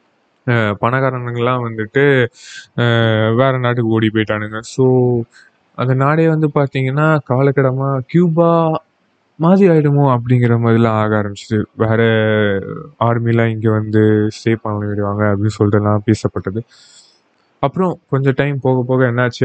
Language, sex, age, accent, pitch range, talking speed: Tamil, male, 20-39, native, 110-135 Hz, 105 wpm